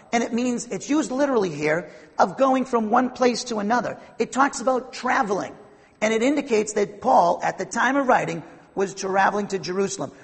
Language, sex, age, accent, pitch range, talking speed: English, male, 40-59, American, 195-245 Hz, 190 wpm